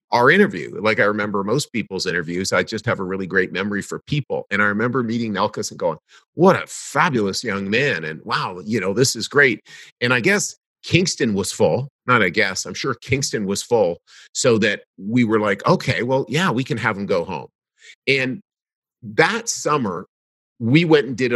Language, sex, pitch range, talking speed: English, male, 100-130 Hz, 200 wpm